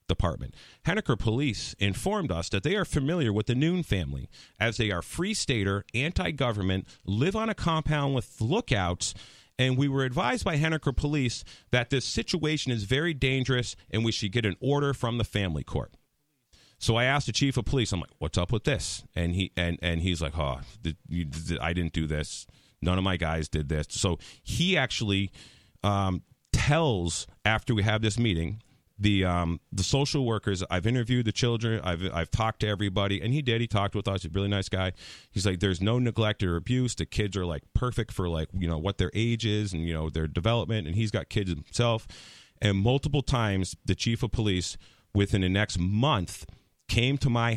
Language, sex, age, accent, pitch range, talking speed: English, male, 40-59, American, 90-125 Hz, 200 wpm